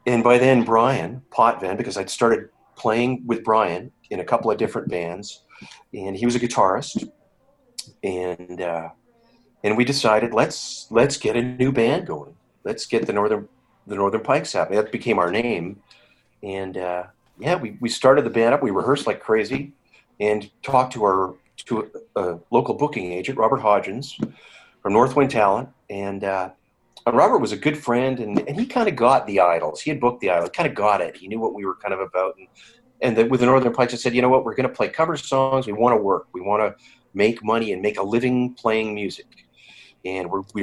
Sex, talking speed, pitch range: male, 210 wpm, 100-130 Hz